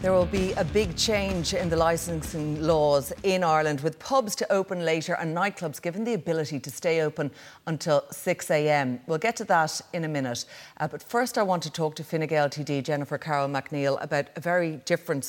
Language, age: English, 40-59